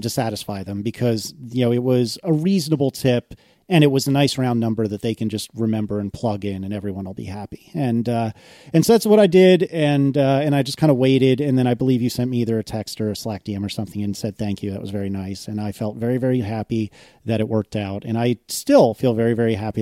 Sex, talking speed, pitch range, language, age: male, 265 wpm, 110-145 Hz, English, 30-49